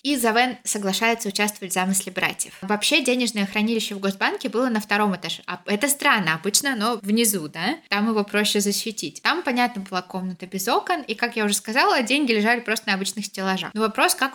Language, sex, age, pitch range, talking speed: Russian, female, 20-39, 195-240 Hz, 190 wpm